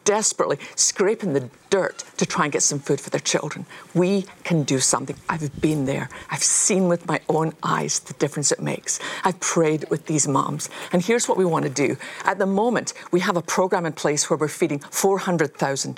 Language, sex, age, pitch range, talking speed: English, female, 50-69, 155-200 Hz, 205 wpm